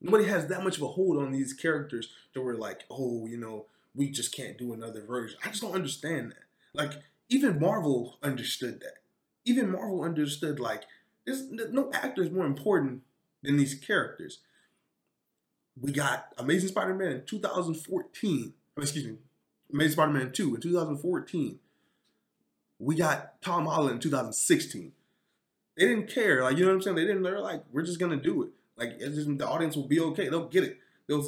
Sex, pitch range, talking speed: male, 125-170 Hz, 185 wpm